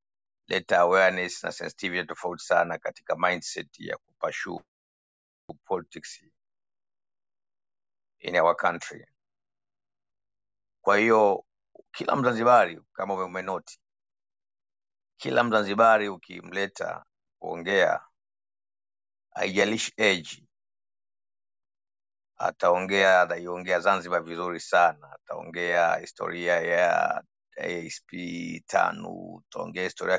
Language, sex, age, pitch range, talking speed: Swahili, male, 50-69, 90-100 Hz, 70 wpm